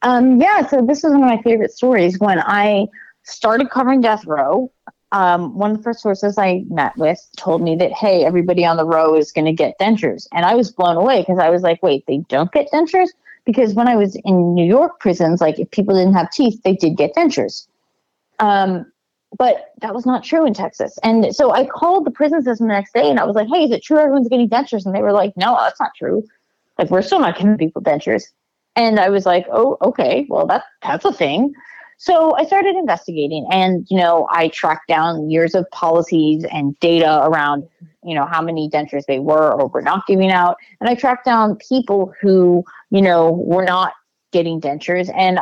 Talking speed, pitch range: 220 wpm, 165-230 Hz